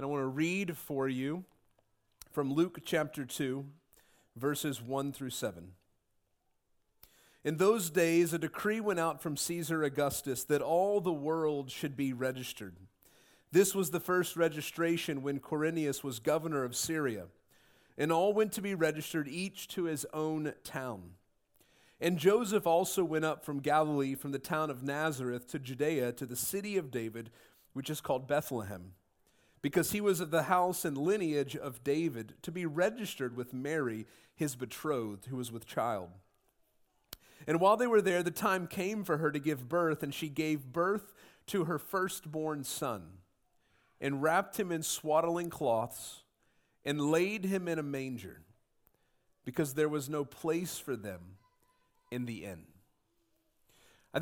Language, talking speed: English, 155 wpm